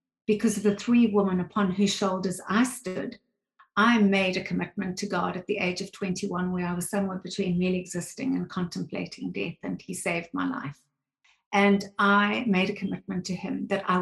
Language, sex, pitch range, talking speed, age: English, female, 185-220 Hz, 195 wpm, 50-69